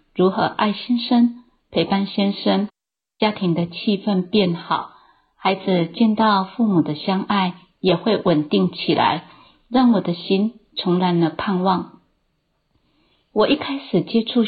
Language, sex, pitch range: Chinese, female, 175-215 Hz